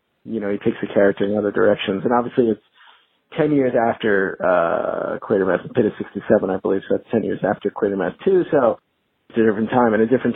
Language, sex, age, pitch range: English, male, 40-59, 115-155 Hz